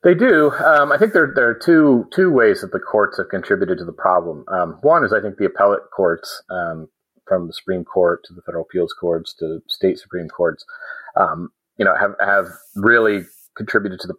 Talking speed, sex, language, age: 210 wpm, male, English, 30-49